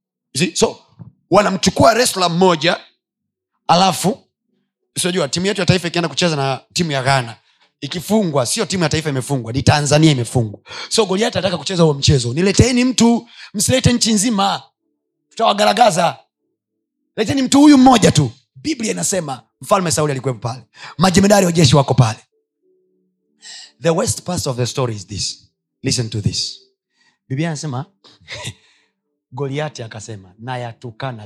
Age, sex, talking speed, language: 30-49, male, 135 wpm, Swahili